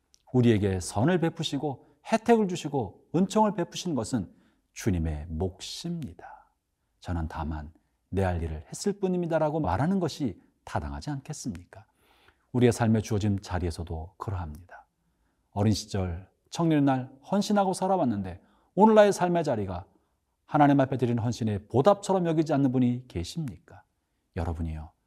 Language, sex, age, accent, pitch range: Korean, male, 40-59, native, 90-155 Hz